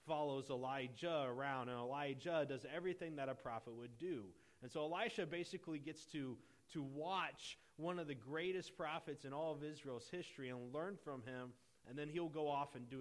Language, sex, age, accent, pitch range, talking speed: English, male, 30-49, American, 125-165 Hz, 190 wpm